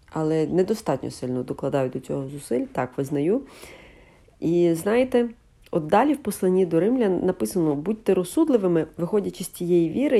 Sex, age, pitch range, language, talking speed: female, 40-59, 160-230 Hz, Ukrainian, 140 wpm